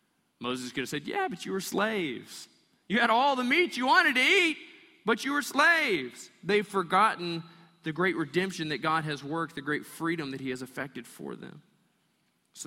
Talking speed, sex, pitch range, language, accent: 195 wpm, male, 130-180 Hz, English, American